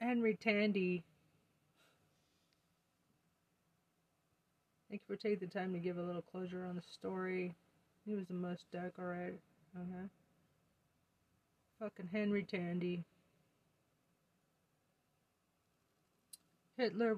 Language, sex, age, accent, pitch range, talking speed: English, female, 40-59, American, 160-195 Hz, 90 wpm